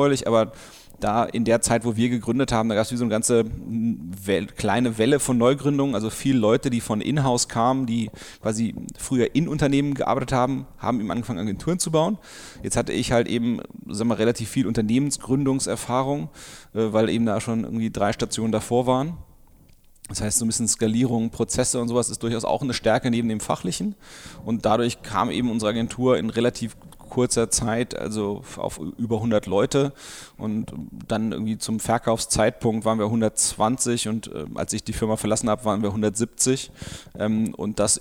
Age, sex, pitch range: 30-49, male, 110-125 Hz